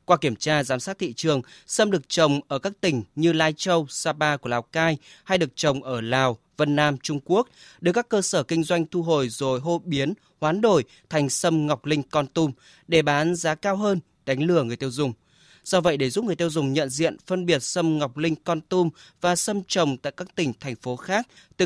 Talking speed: 235 wpm